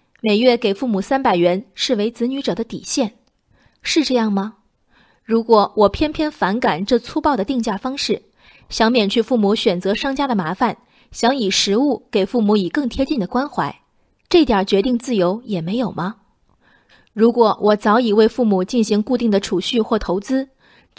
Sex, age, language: female, 20-39, Chinese